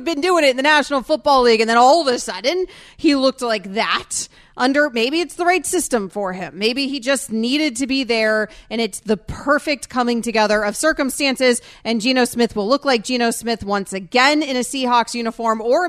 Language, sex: English, female